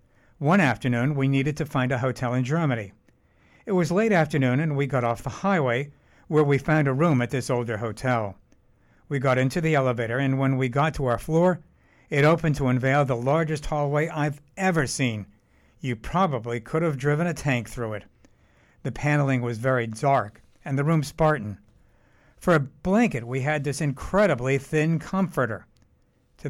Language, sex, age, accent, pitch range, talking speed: English, male, 60-79, American, 125-160 Hz, 180 wpm